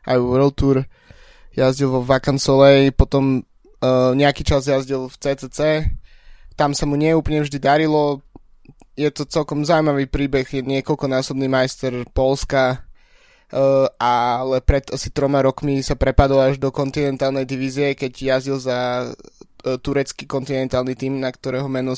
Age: 20-39